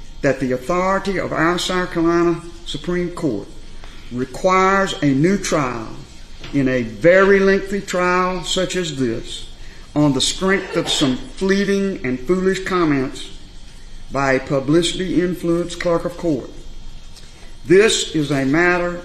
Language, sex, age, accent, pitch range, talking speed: English, male, 50-69, American, 130-175 Hz, 125 wpm